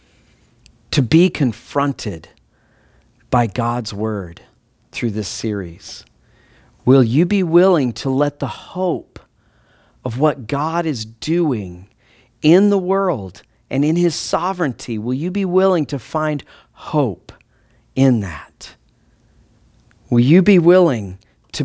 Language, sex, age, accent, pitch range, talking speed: English, male, 40-59, American, 110-155 Hz, 120 wpm